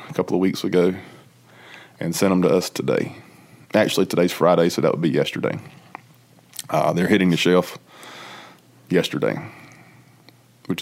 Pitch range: 85-100 Hz